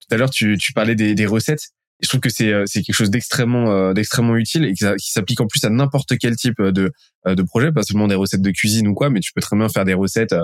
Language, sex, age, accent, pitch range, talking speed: French, male, 20-39, French, 100-120 Hz, 275 wpm